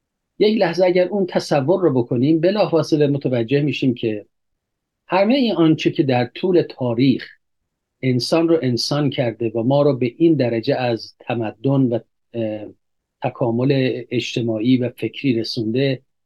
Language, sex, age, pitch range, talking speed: Persian, male, 50-69, 120-155 Hz, 135 wpm